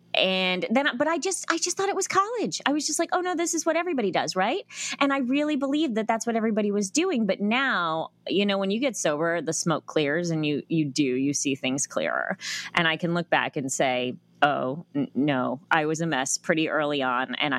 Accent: American